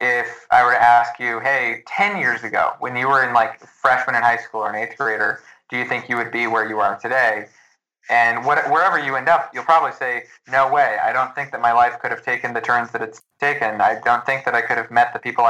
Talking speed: 265 wpm